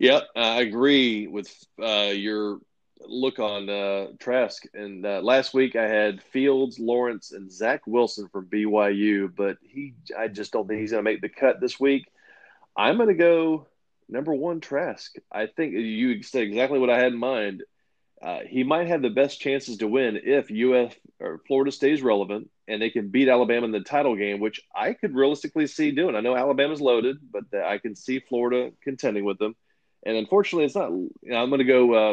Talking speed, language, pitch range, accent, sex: 205 wpm, English, 105-135 Hz, American, male